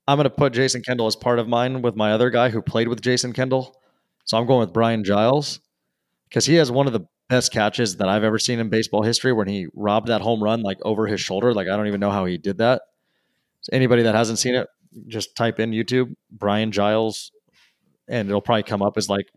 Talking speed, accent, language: 240 wpm, American, English